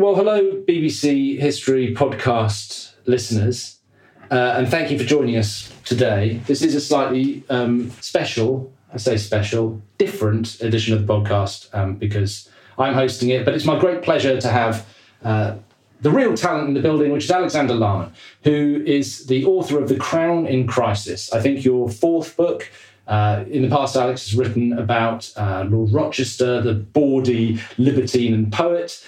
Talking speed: 165 wpm